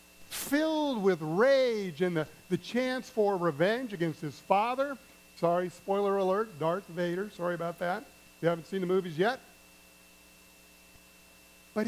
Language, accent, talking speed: English, American, 135 wpm